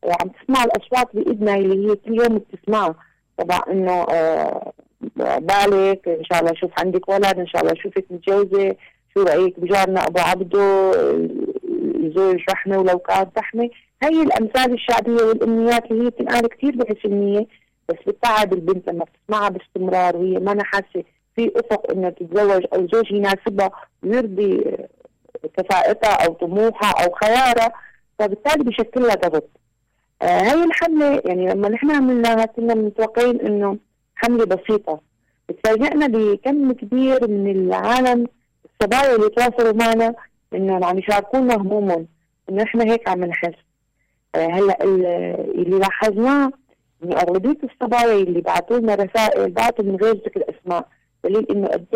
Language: Arabic